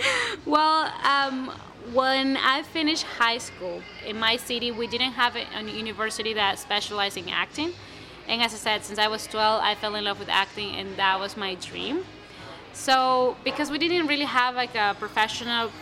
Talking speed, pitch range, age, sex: 180 wpm, 210-260 Hz, 20-39, female